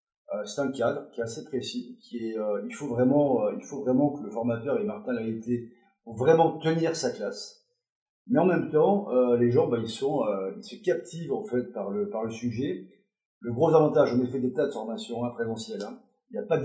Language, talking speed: French, 240 wpm